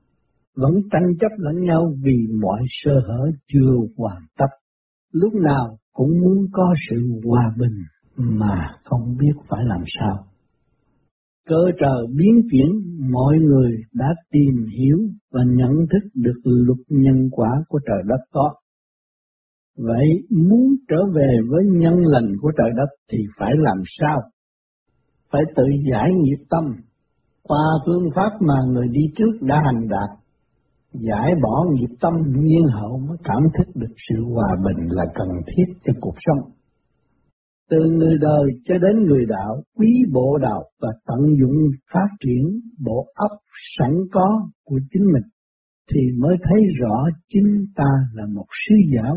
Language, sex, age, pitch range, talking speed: Vietnamese, male, 60-79, 120-170 Hz, 155 wpm